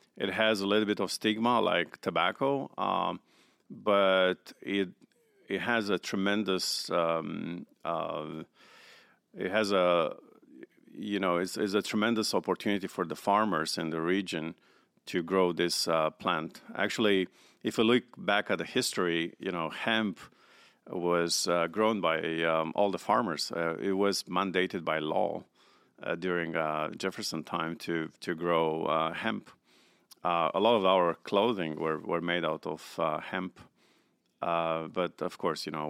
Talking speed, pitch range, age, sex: 155 wpm, 80-100 Hz, 50-69, male